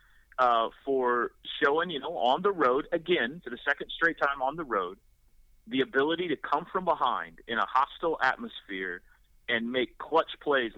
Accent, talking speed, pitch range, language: American, 175 wpm, 105-130 Hz, English